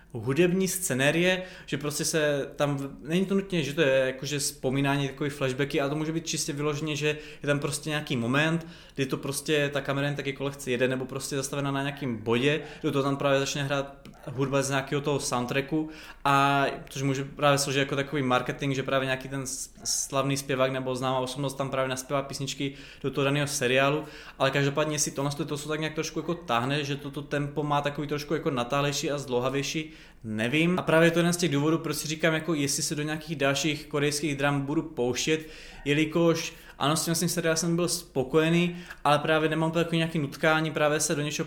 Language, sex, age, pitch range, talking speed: Czech, male, 20-39, 140-155 Hz, 205 wpm